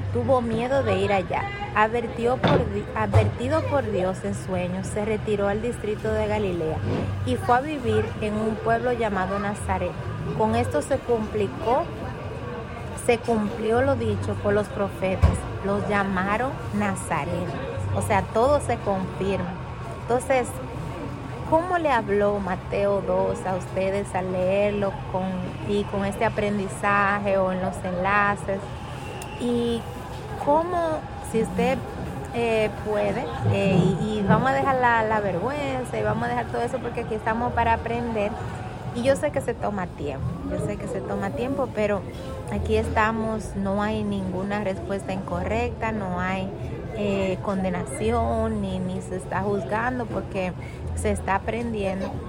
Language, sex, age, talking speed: English, female, 30-49, 140 wpm